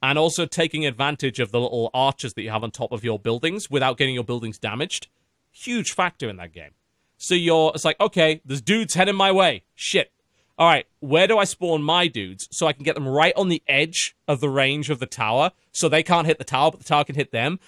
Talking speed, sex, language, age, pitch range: 245 wpm, male, English, 30-49, 125-165 Hz